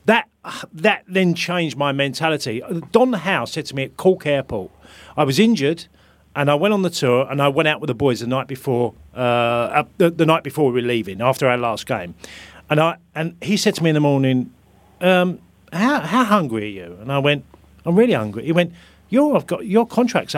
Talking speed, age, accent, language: 220 wpm, 40-59, British, English